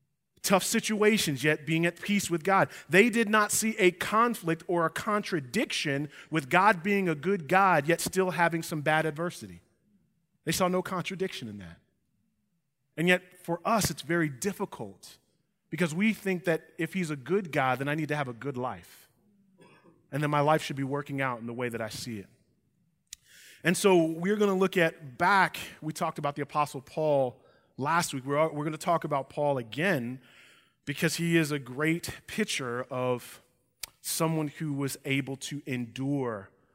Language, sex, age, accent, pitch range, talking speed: English, male, 30-49, American, 130-175 Hz, 180 wpm